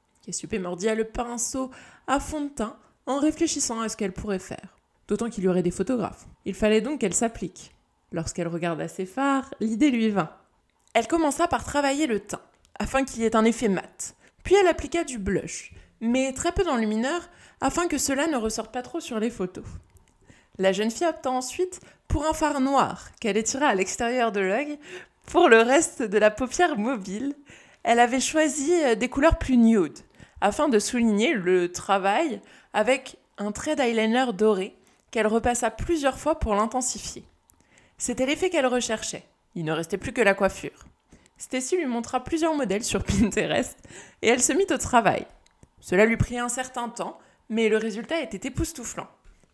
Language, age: French, 20-39